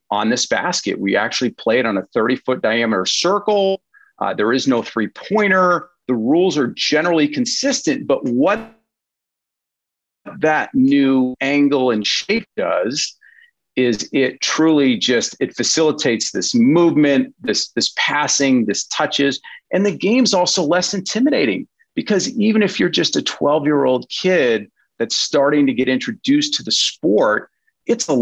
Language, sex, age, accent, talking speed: English, male, 40-59, American, 140 wpm